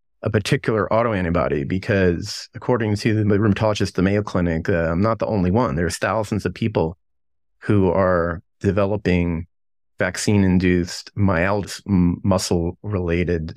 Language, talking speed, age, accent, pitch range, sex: English, 120 wpm, 30-49, American, 85-110 Hz, male